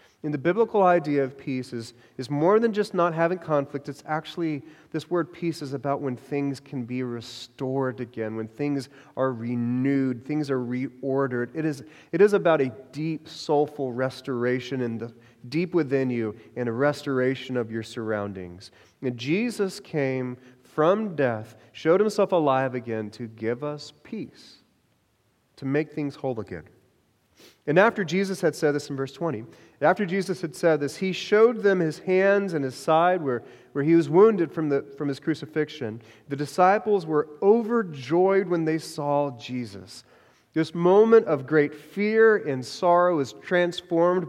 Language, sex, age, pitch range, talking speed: English, male, 30-49, 125-170 Hz, 165 wpm